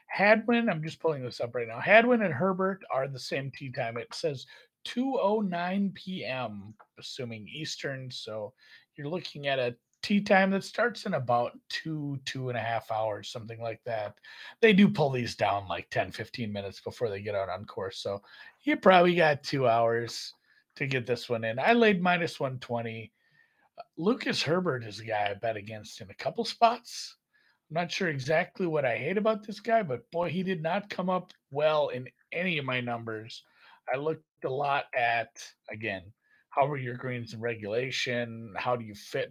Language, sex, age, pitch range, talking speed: English, male, 40-59, 120-190 Hz, 185 wpm